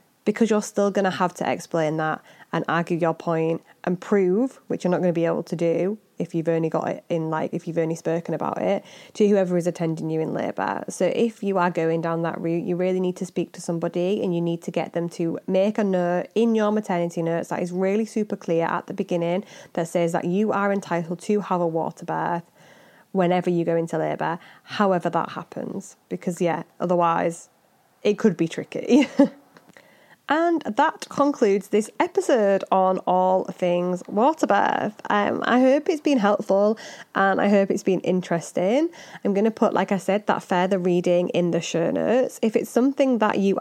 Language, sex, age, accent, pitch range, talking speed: English, female, 20-39, British, 170-210 Hz, 200 wpm